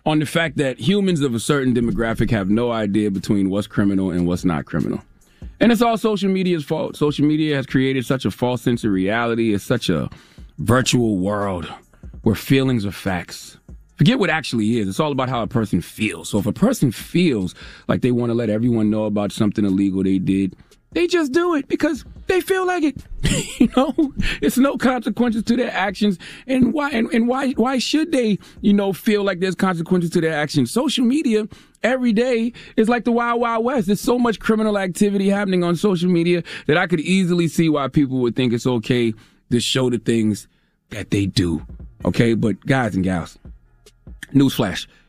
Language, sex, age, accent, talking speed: English, male, 30-49, American, 200 wpm